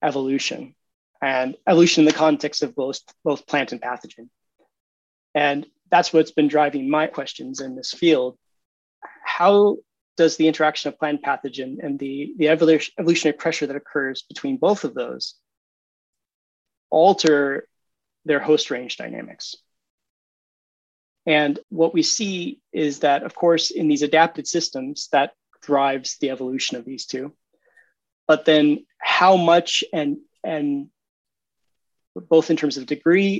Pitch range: 145-170 Hz